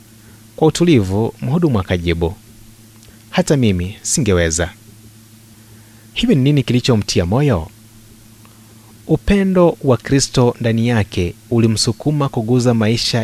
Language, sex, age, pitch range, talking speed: Swahili, male, 30-49, 105-125 Hz, 80 wpm